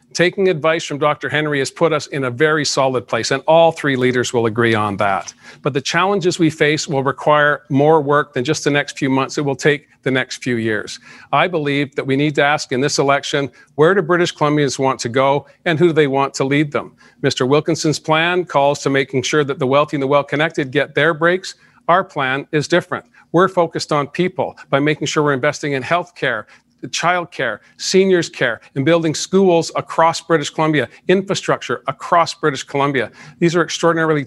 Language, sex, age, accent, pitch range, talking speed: English, male, 50-69, American, 140-165 Hz, 205 wpm